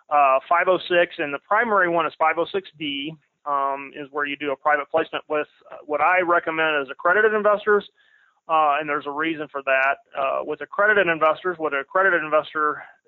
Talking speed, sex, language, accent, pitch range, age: 175 wpm, male, English, American, 140-175 Hz, 30-49